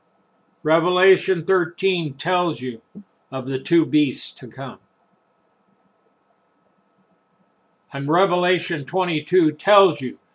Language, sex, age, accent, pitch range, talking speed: English, male, 60-79, American, 140-175 Hz, 85 wpm